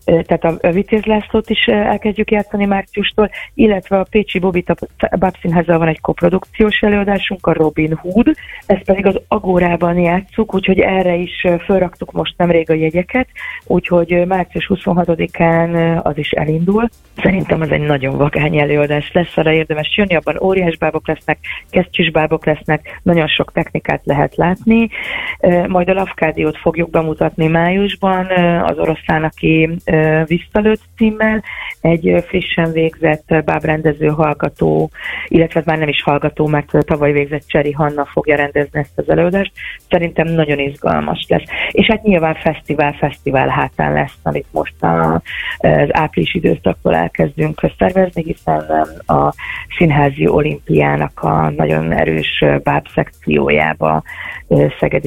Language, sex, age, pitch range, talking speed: Hungarian, female, 30-49, 150-190 Hz, 130 wpm